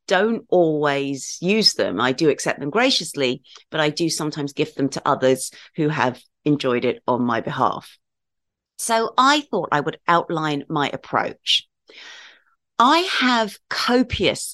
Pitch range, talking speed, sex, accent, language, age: 140-185 Hz, 145 wpm, female, British, English, 40-59